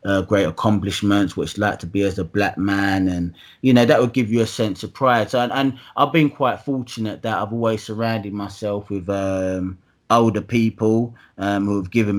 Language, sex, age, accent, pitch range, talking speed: English, male, 20-39, British, 95-115 Hz, 205 wpm